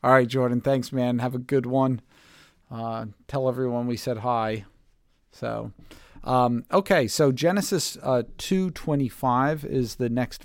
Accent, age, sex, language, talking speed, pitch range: American, 40-59, male, English, 145 wpm, 120-145 Hz